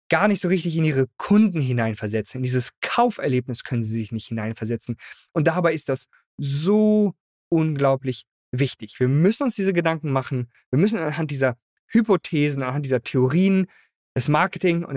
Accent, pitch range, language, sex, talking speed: German, 120-160 Hz, German, male, 160 wpm